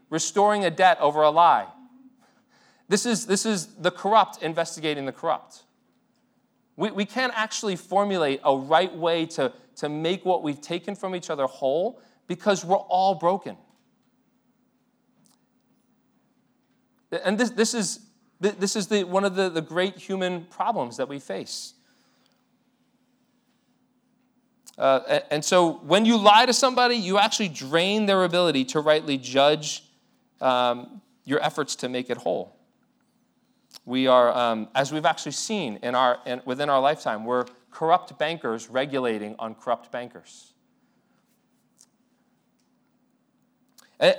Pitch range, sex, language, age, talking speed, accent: 150-240 Hz, male, English, 40-59, 135 wpm, American